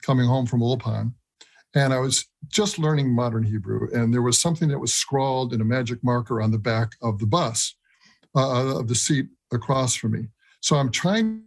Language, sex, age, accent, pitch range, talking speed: English, male, 60-79, American, 120-160 Hz, 200 wpm